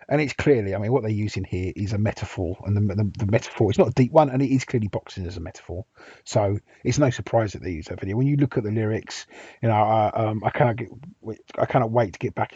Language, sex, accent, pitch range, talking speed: English, male, British, 100-125 Hz, 270 wpm